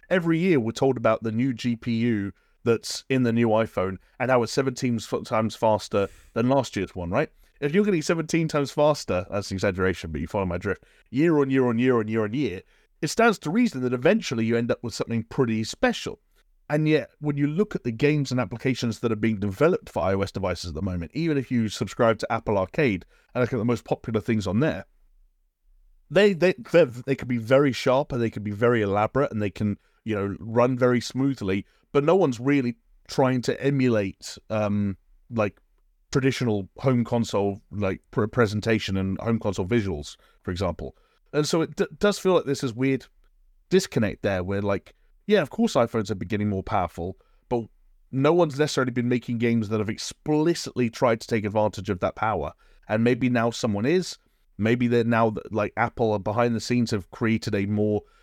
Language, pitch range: English, 105-135 Hz